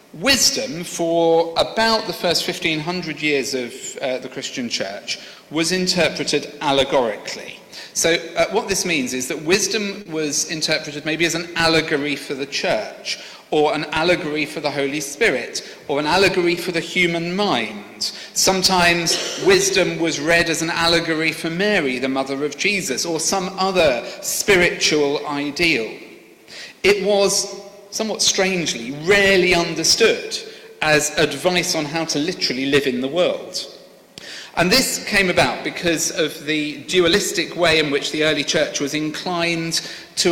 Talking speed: 145 wpm